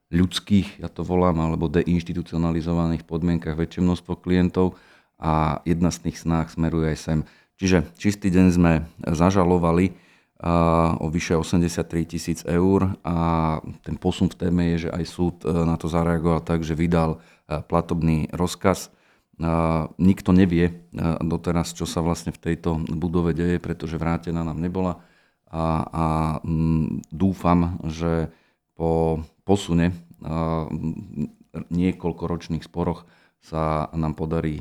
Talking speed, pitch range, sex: 120 wpm, 80-85 Hz, male